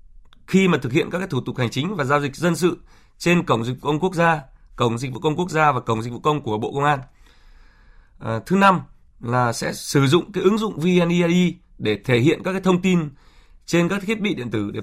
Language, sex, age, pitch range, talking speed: Vietnamese, male, 20-39, 125-170 Hz, 250 wpm